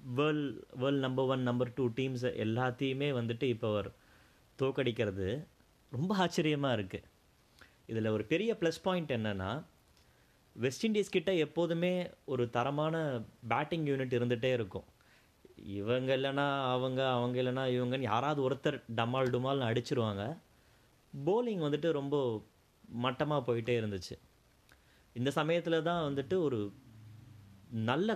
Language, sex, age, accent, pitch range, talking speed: Tamil, male, 30-49, native, 110-140 Hz, 115 wpm